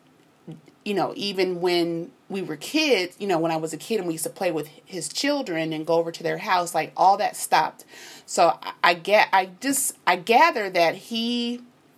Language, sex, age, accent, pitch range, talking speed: English, female, 30-49, American, 165-210 Hz, 210 wpm